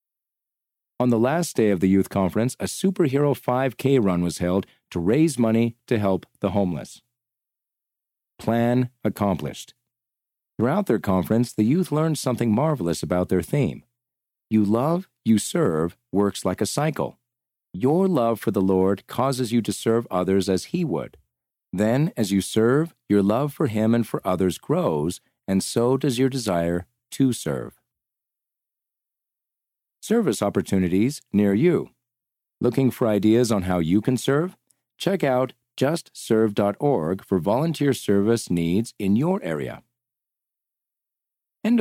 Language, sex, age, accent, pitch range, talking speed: English, male, 40-59, American, 95-130 Hz, 140 wpm